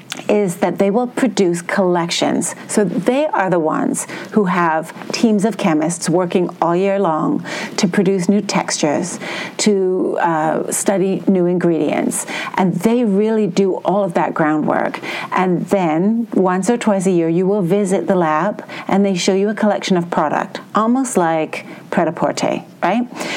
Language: English